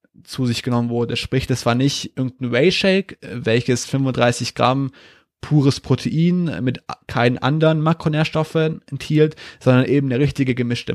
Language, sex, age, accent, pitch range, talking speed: German, male, 20-39, German, 120-145 Hz, 135 wpm